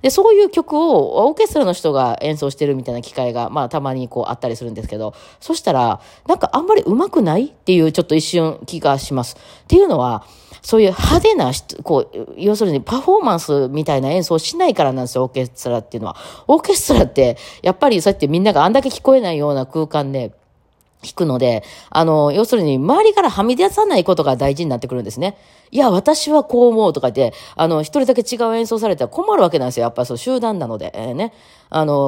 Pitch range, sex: 130-225 Hz, female